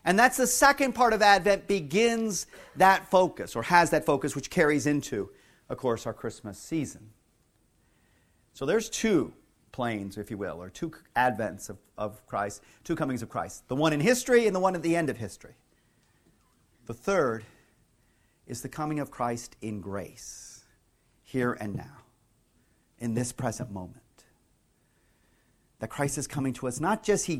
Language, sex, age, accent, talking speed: English, male, 40-59, American, 165 wpm